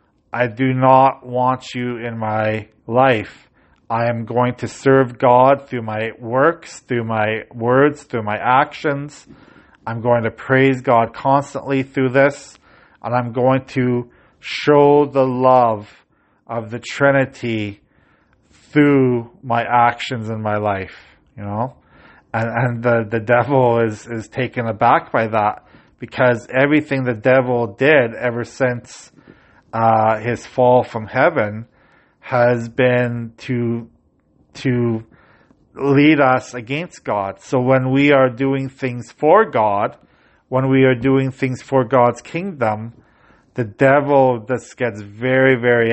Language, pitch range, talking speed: English, 115-130 Hz, 135 wpm